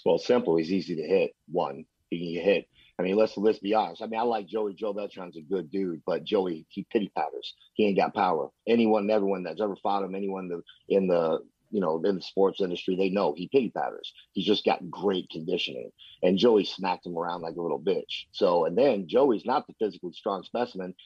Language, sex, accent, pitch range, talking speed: English, male, American, 90-110 Hz, 230 wpm